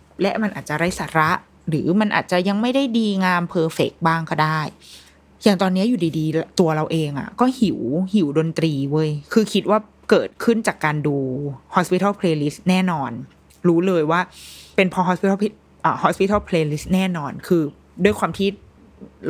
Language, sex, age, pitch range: Thai, female, 20-39, 155-195 Hz